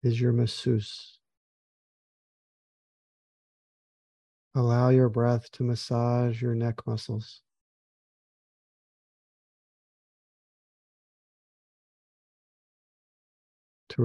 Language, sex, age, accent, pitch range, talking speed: English, male, 50-69, American, 110-125 Hz, 50 wpm